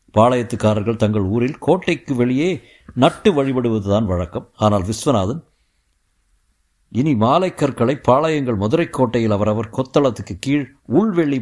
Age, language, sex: 60-79, Tamil, male